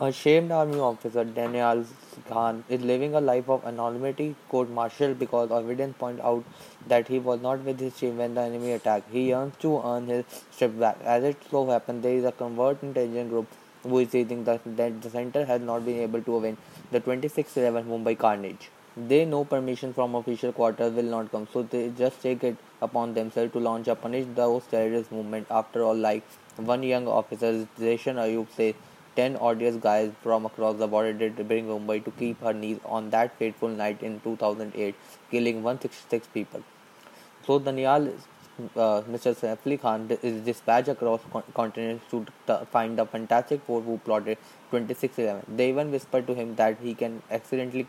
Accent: Indian